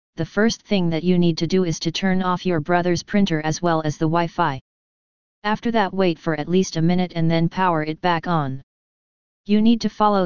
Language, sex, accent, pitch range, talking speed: English, female, American, 165-190 Hz, 220 wpm